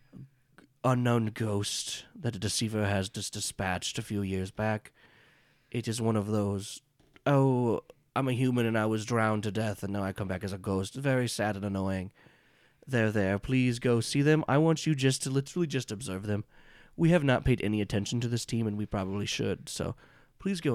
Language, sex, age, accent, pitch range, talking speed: English, male, 30-49, American, 105-135 Hz, 200 wpm